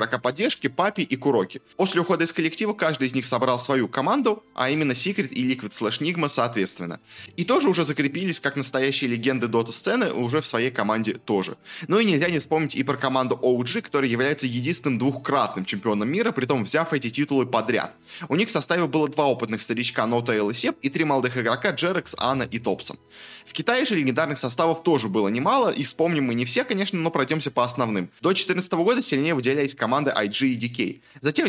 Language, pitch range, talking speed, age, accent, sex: Russian, 125-165 Hz, 195 wpm, 20-39, native, male